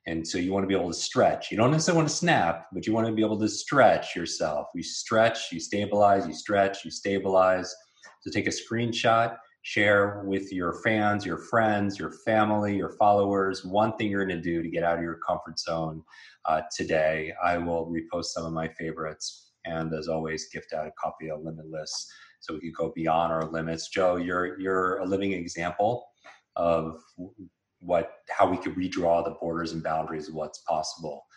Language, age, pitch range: English, 30-49, 80-100 Hz